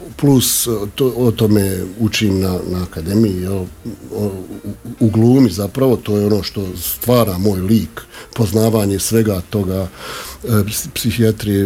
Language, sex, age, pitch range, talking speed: Croatian, male, 50-69, 95-120 Hz, 135 wpm